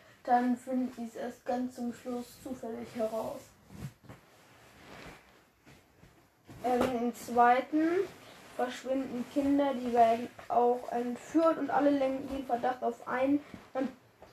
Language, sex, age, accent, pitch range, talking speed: German, female, 10-29, German, 230-260 Hz, 105 wpm